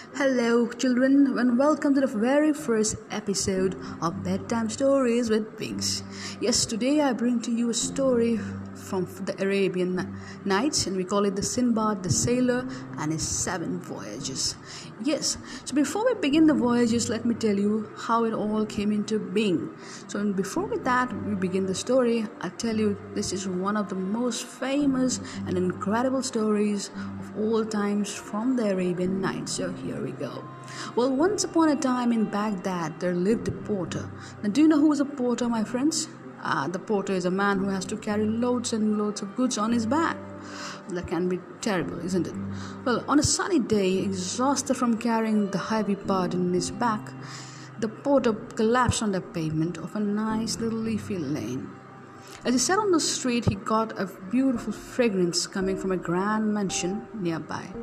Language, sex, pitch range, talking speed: English, female, 190-245 Hz, 180 wpm